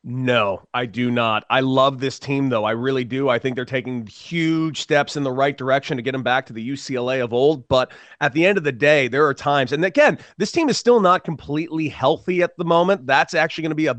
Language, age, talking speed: English, 30-49, 255 wpm